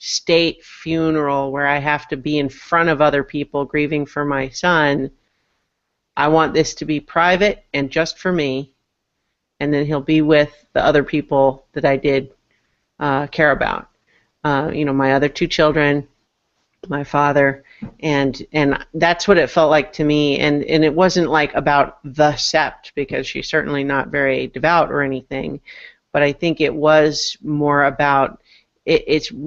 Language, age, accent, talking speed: English, 40-59, American, 165 wpm